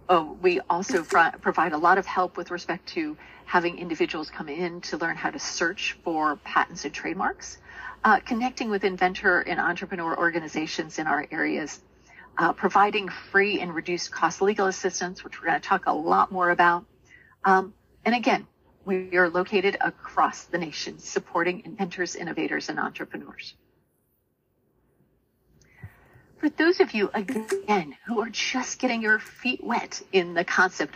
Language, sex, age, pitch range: English, female, 40-59, 190-230 Hz